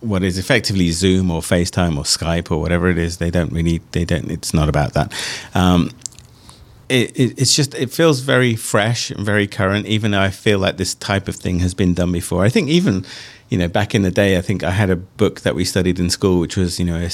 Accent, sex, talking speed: British, male, 240 wpm